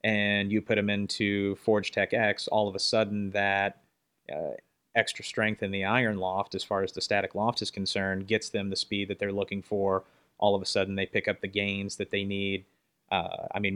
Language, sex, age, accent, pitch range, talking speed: English, male, 30-49, American, 95-105 Hz, 225 wpm